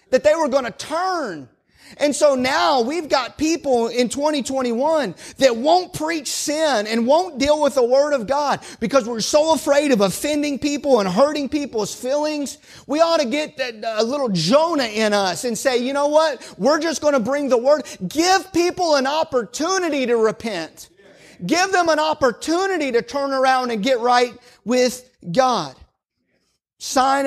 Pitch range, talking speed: 215-280 Hz, 170 wpm